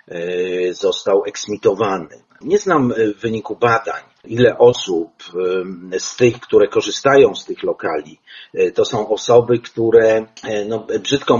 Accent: native